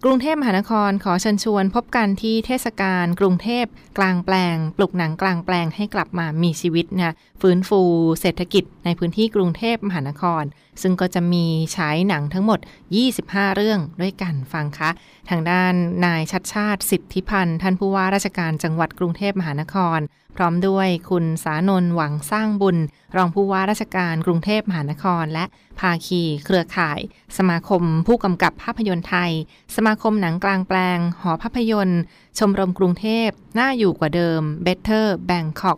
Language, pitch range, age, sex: Thai, 165-195 Hz, 20-39, female